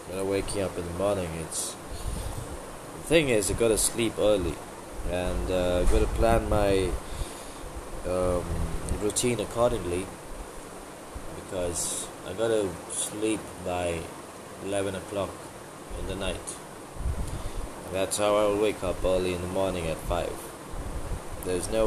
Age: 20-39